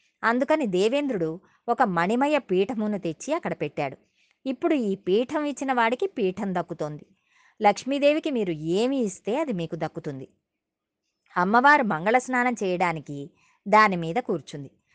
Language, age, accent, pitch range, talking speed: Telugu, 20-39, native, 170-245 Hz, 110 wpm